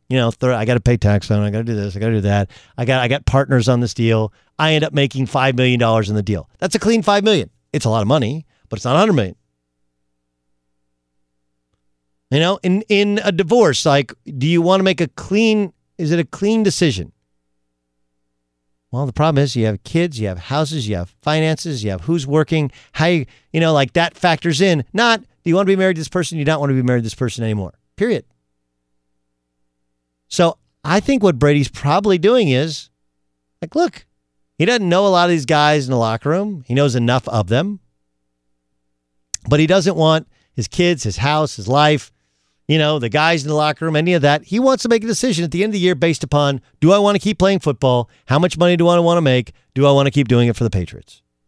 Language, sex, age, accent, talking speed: English, male, 40-59, American, 240 wpm